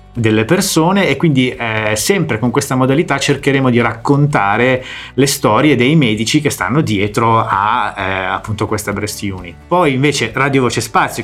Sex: male